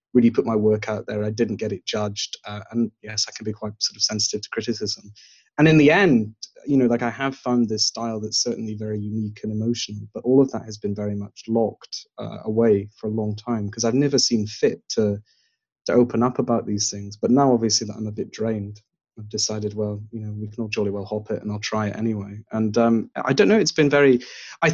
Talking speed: 245 wpm